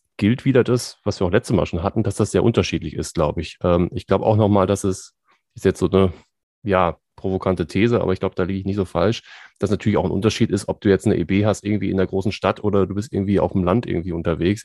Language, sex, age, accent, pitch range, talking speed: German, male, 30-49, German, 95-110 Hz, 270 wpm